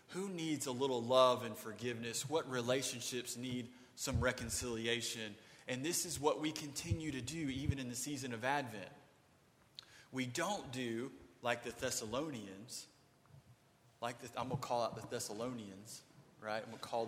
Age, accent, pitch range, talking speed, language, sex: 30-49, American, 120-140 Hz, 160 wpm, English, male